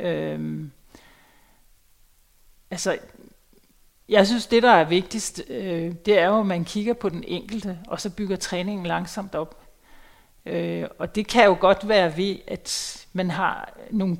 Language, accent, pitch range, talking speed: Danish, native, 170-205 Hz, 150 wpm